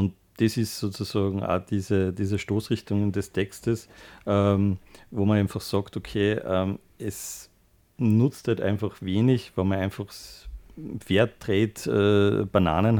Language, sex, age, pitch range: German, male, 50-69, 95-110 Hz